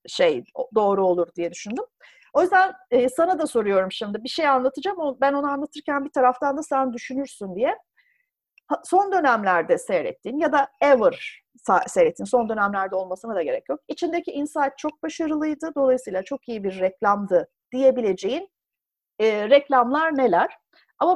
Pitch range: 235-365 Hz